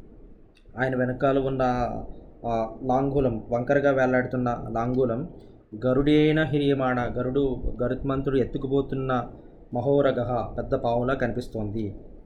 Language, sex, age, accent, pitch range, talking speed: Telugu, male, 20-39, native, 120-135 Hz, 80 wpm